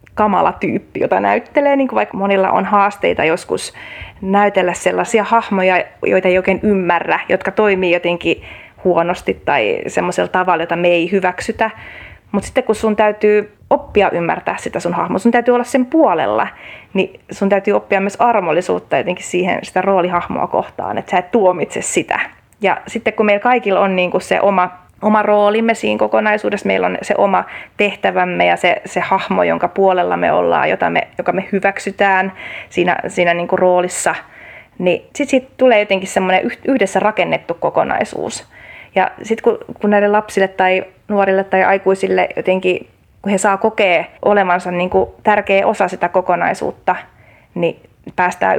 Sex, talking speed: female, 150 wpm